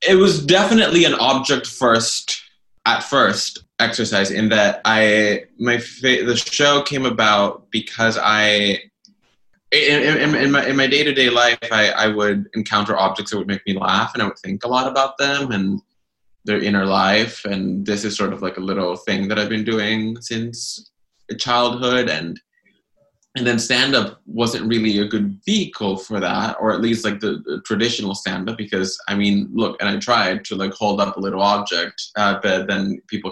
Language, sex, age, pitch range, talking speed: English, male, 20-39, 100-125 Hz, 175 wpm